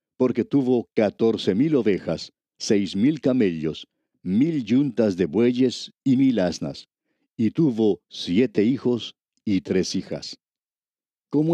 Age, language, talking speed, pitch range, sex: 50-69, Spanish, 120 wpm, 105-145 Hz, male